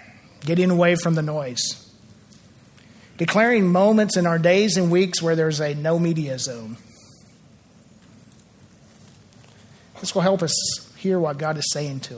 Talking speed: 140 wpm